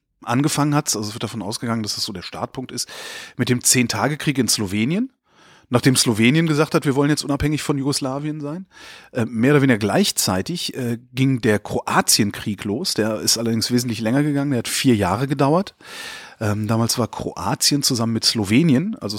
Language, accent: German, German